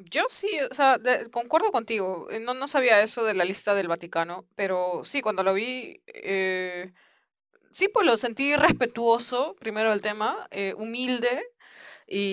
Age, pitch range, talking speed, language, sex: 20-39, 175-230 Hz, 160 wpm, Spanish, female